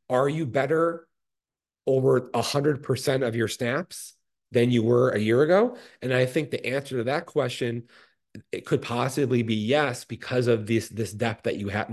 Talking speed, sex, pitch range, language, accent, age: 185 wpm, male, 110-135 Hz, English, American, 30-49